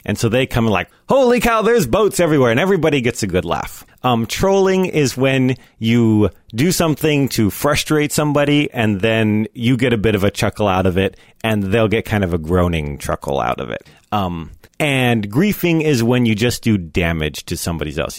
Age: 30-49